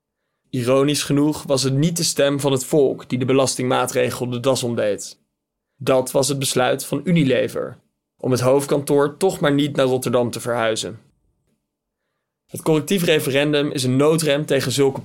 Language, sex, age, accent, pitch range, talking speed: Dutch, male, 20-39, Dutch, 130-145 Hz, 160 wpm